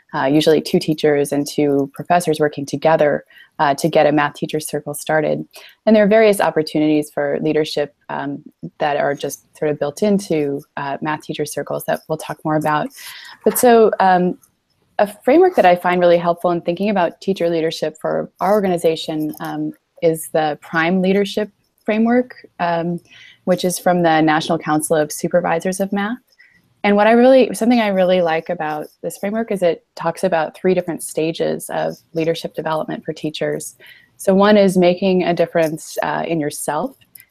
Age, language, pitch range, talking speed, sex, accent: 20-39, English, 155-185 Hz, 175 wpm, female, American